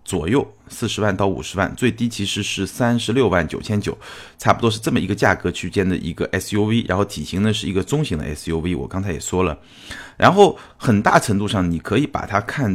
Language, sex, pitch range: Chinese, male, 90-115 Hz